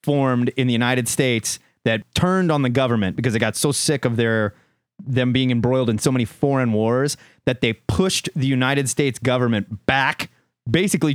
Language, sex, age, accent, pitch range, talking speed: English, male, 30-49, American, 105-135 Hz, 185 wpm